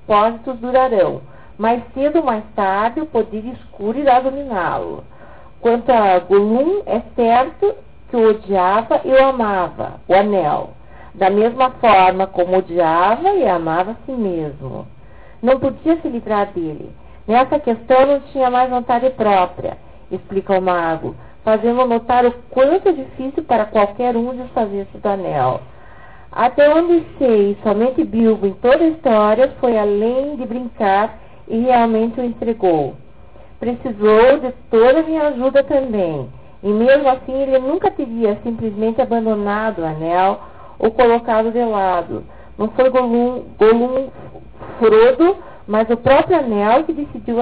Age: 40-59